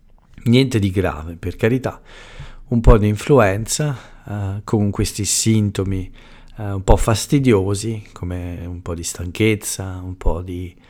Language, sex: Italian, male